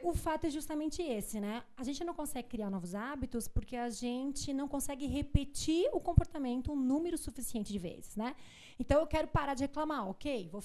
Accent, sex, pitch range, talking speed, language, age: Brazilian, female, 230-285 Hz, 195 wpm, Portuguese, 20-39